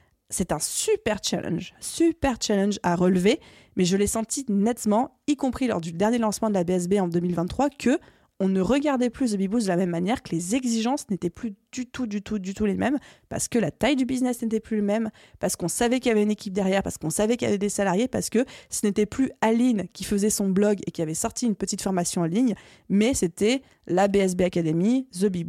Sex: female